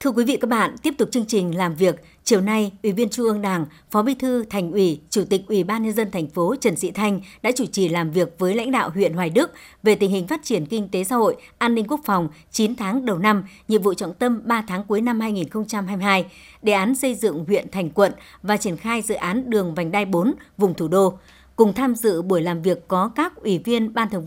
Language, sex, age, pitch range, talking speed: Vietnamese, male, 60-79, 185-235 Hz, 250 wpm